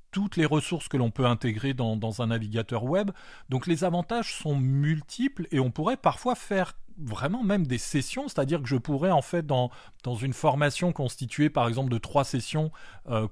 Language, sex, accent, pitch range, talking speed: French, male, French, 125-170 Hz, 195 wpm